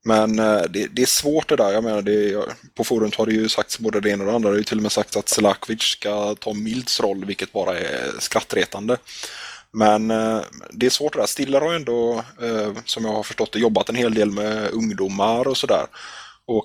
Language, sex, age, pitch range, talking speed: Swedish, male, 20-39, 105-115 Hz, 225 wpm